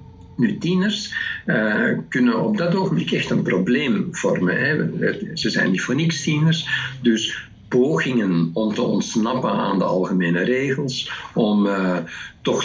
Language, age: Dutch, 50-69